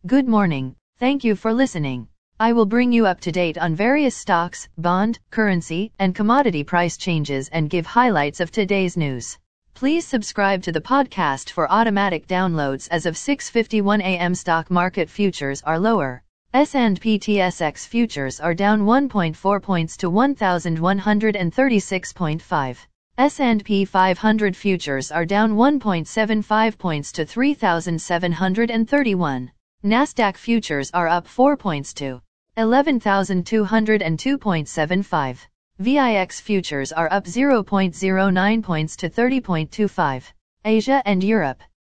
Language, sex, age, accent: English, female, 40-59, American